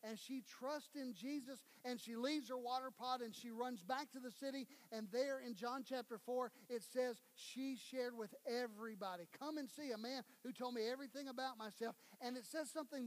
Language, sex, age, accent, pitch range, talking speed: English, male, 40-59, American, 235-285 Hz, 205 wpm